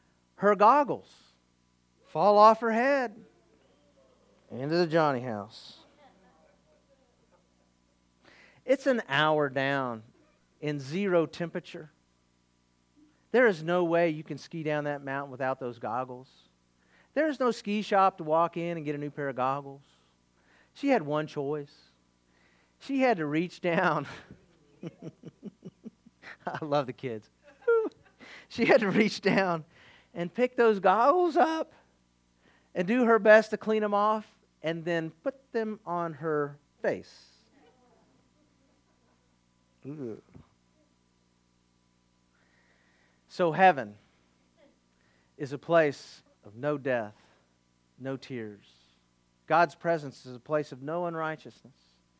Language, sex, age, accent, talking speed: English, male, 40-59, American, 115 wpm